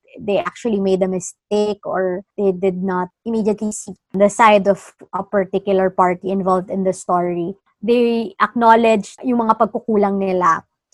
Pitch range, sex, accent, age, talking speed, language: 190-225 Hz, male, Filipino, 20-39, 145 wpm, English